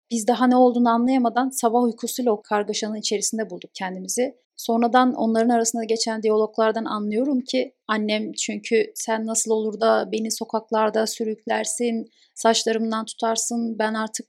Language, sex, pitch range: Turkish, female, 215-245 Hz